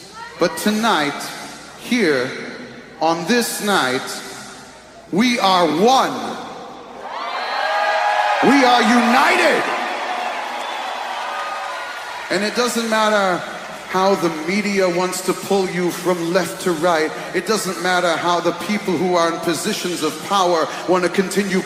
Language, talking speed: English, 115 wpm